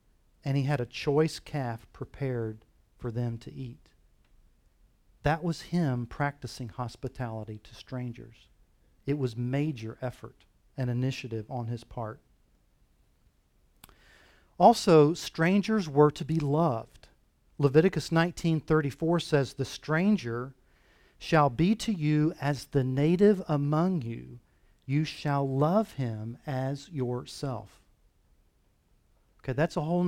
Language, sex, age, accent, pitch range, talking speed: English, male, 40-59, American, 115-155 Hz, 110 wpm